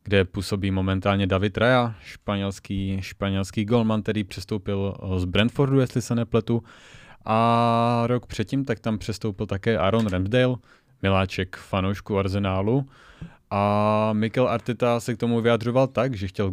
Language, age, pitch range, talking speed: Czech, 30-49, 95-115 Hz, 135 wpm